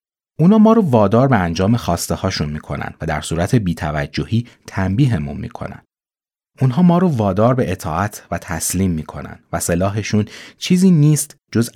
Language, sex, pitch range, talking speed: Persian, male, 85-130 Hz, 150 wpm